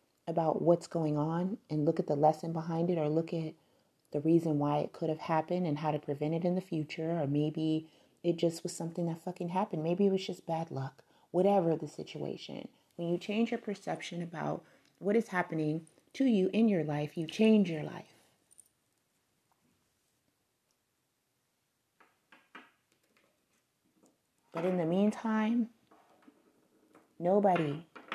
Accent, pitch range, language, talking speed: American, 160-185 Hz, English, 150 wpm